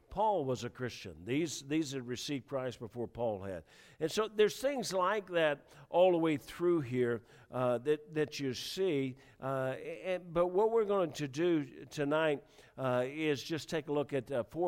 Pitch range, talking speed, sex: 120-155 Hz, 190 wpm, male